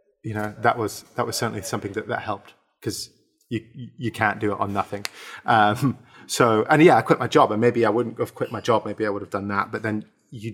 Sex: male